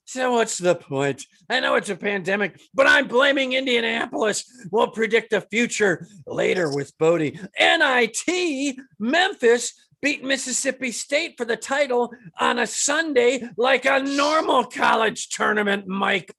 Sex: male